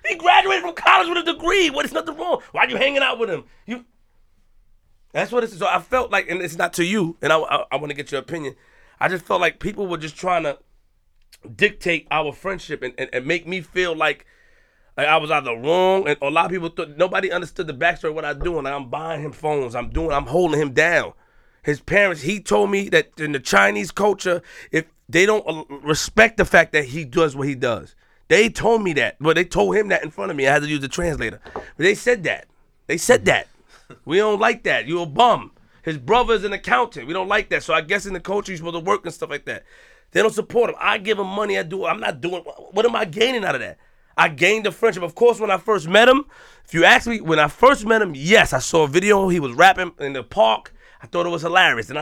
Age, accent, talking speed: 30-49, American, 260 wpm